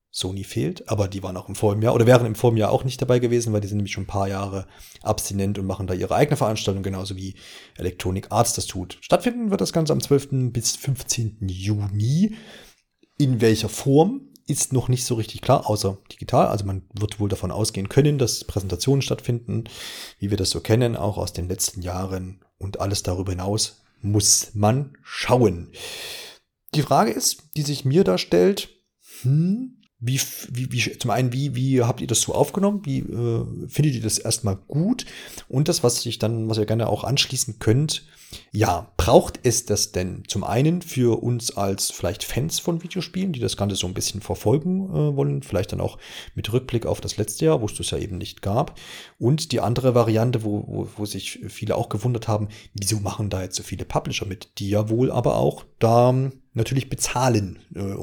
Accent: German